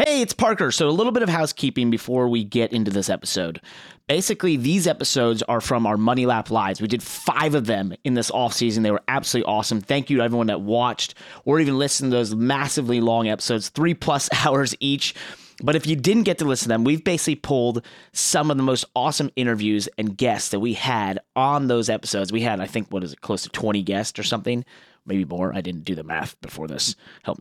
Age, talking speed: 30-49, 225 wpm